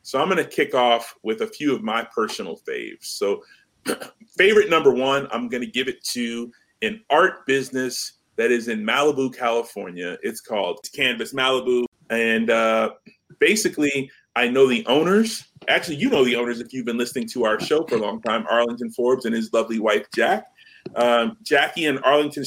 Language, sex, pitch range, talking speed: English, male, 120-160 Hz, 185 wpm